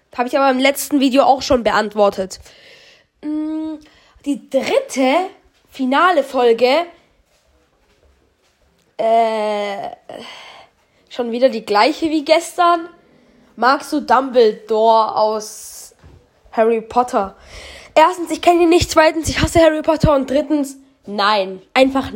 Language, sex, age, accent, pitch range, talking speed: German, female, 10-29, German, 260-345 Hz, 110 wpm